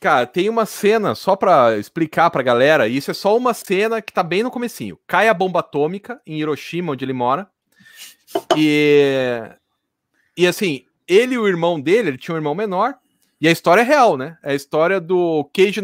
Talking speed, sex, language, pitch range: 195 wpm, male, Portuguese, 155-225 Hz